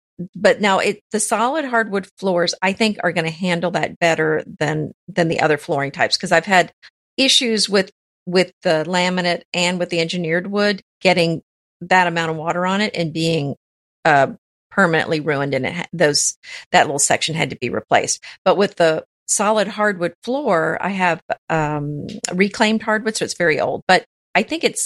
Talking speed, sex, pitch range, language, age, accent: 180 wpm, female, 165-205 Hz, English, 50-69, American